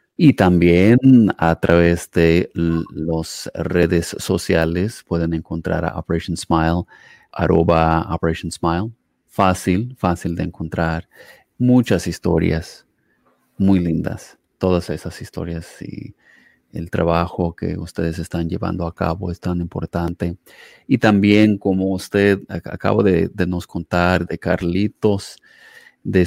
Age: 30-49